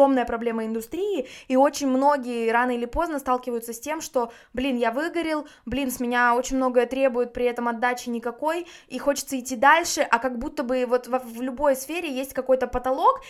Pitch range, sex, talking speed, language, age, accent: 245-295 Hz, female, 180 wpm, Russian, 20-39, native